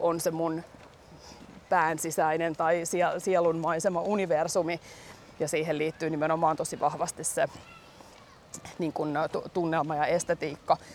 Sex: female